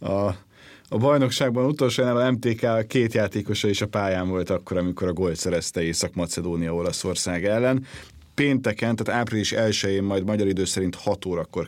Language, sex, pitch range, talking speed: Hungarian, male, 95-115 Hz, 155 wpm